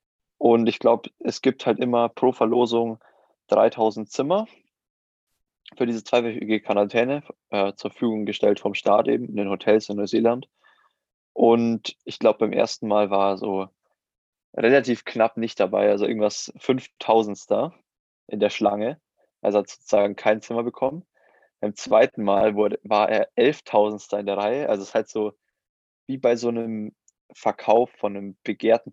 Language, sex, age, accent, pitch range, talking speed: German, male, 20-39, German, 105-125 Hz, 160 wpm